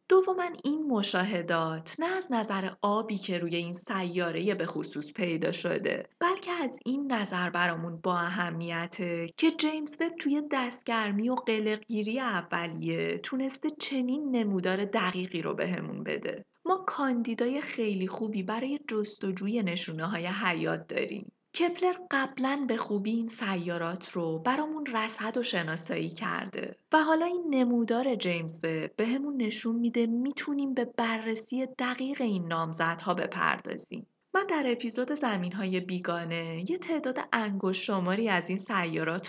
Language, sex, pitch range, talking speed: Persian, female, 180-260 Hz, 135 wpm